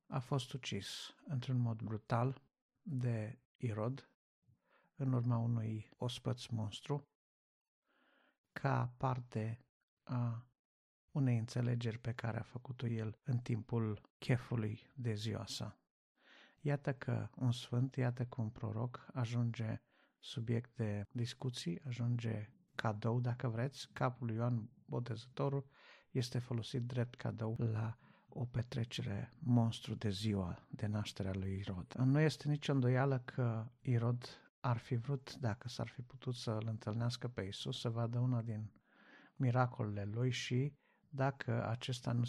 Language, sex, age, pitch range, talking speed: Romanian, male, 50-69, 115-130 Hz, 130 wpm